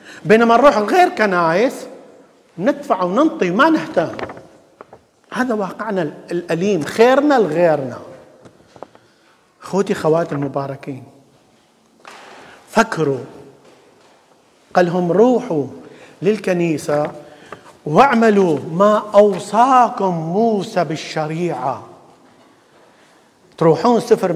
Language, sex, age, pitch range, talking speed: English, male, 50-69, 160-225 Hz, 65 wpm